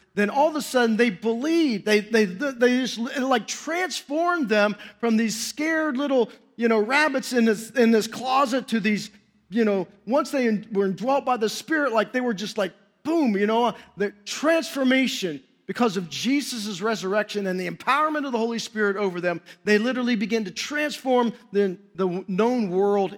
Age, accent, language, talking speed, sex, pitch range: 40-59, American, English, 185 wpm, male, 180-235 Hz